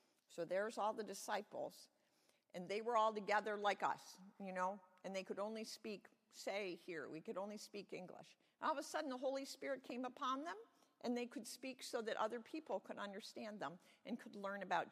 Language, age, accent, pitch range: English, 50-69, American, 185-255 Hz